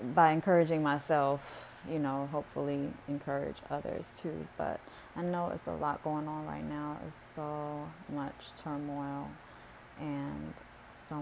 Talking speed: 135 wpm